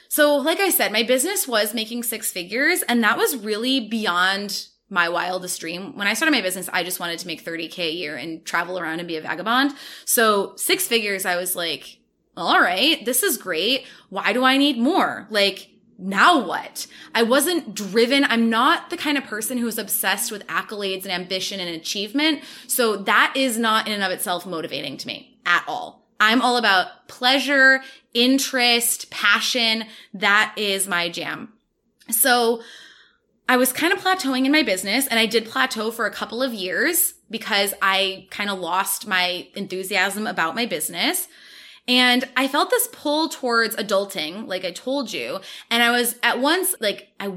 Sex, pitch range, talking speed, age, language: female, 195-260 Hz, 180 wpm, 20-39, English